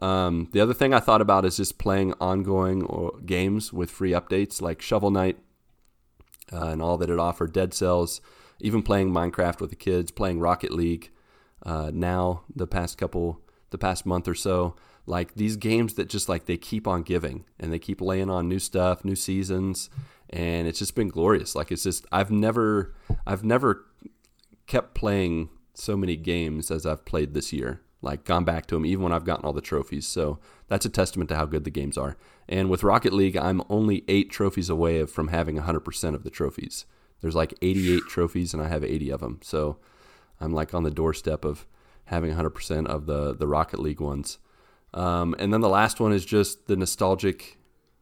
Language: English